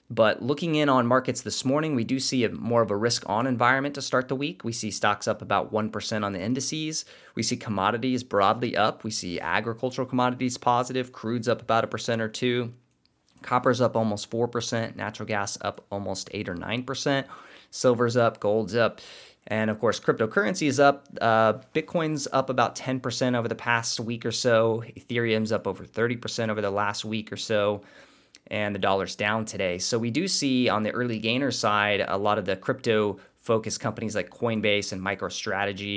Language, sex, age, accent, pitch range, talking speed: English, male, 20-39, American, 105-125 Hz, 185 wpm